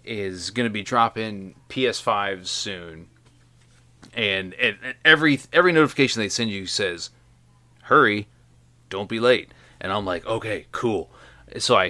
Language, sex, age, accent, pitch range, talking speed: English, male, 30-49, American, 85-125 Hz, 130 wpm